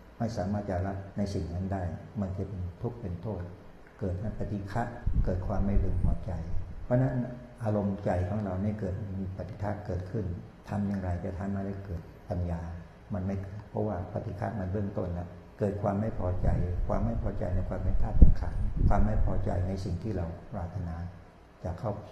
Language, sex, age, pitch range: Thai, male, 60-79, 90-105 Hz